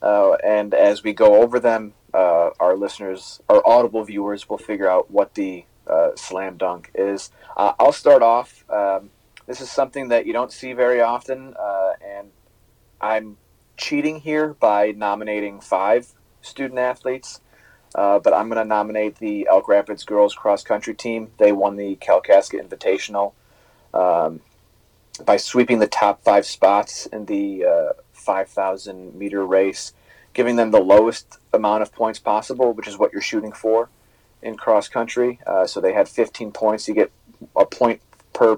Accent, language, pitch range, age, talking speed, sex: American, English, 100-120 Hz, 30-49, 165 wpm, male